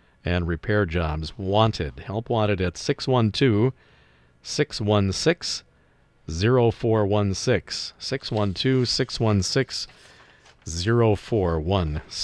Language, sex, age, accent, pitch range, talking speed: English, male, 50-69, American, 90-115 Hz, 55 wpm